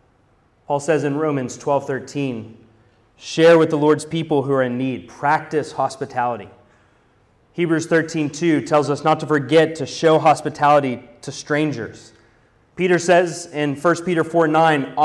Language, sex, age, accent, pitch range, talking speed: English, male, 30-49, American, 120-155 Hz, 135 wpm